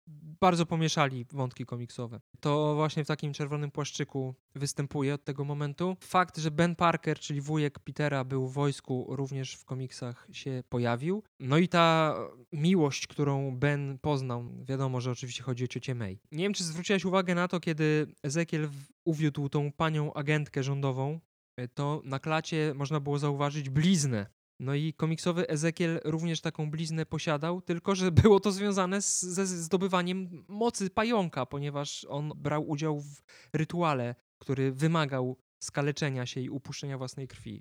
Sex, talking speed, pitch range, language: male, 150 wpm, 135-170 Hz, Polish